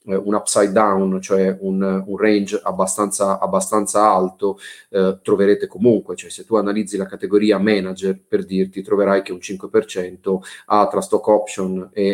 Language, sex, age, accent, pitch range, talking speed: Italian, male, 30-49, native, 95-105 Hz, 155 wpm